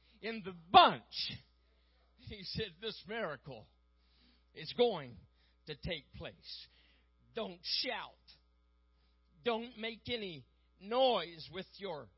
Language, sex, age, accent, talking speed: English, male, 50-69, American, 100 wpm